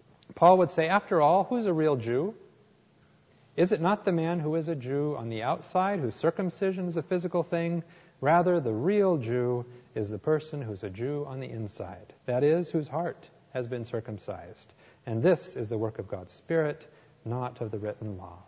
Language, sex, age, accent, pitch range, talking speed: English, male, 40-59, American, 115-155 Hz, 195 wpm